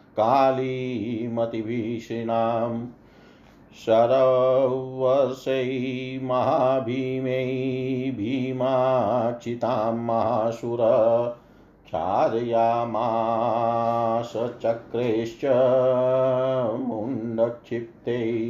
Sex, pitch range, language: male, 120-135 Hz, Hindi